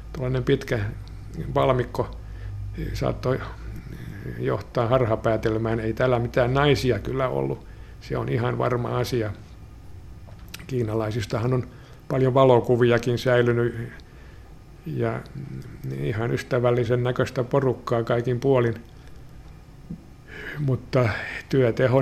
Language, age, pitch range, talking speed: Finnish, 60-79, 115-130 Hz, 85 wpm